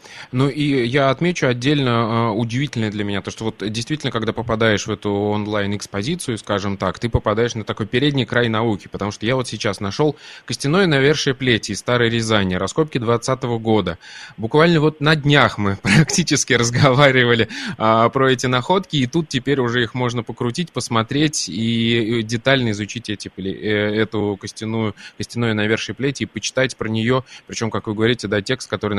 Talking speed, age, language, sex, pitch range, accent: 170 wpm, 20-39, Russian, male, 105-130 Hz, native